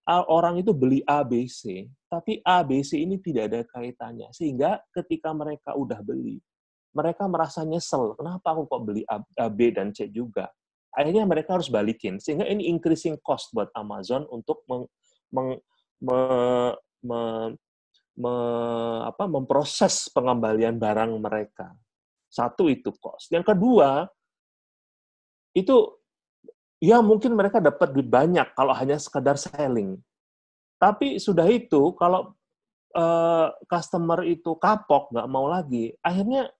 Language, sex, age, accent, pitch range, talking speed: Indonesian, male, 30-49, native, 125-190 Hz, 135 wpm